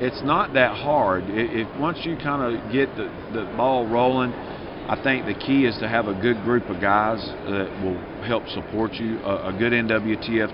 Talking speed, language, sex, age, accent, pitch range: 200 wpm, English, male, 50-69, American, 105-120 Hz